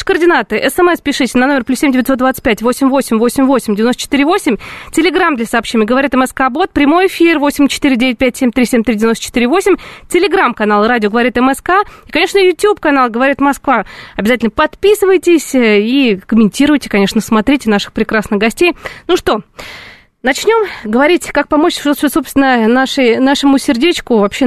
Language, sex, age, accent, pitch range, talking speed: Russian, female, 20-39, native, 240-325 Hz, 120 wpm